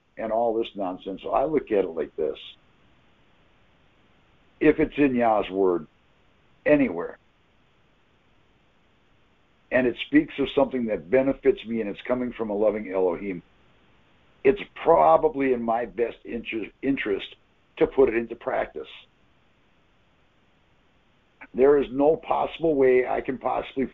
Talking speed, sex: 130 wpm, male